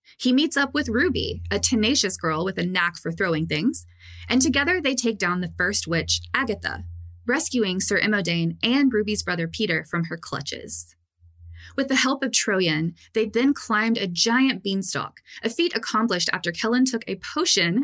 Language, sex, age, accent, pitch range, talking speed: English, female, 20-39, American, 170-245 Hz, 175 wpm